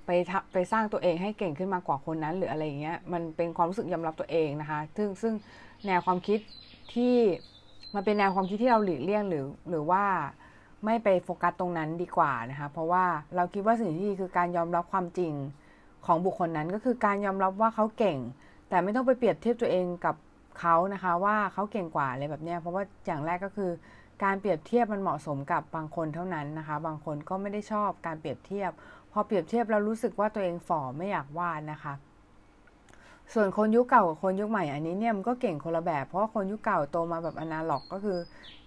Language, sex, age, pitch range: Thai, female, 20-39, 160-205 Hz